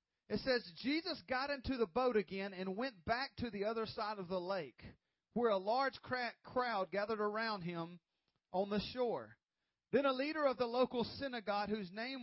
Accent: American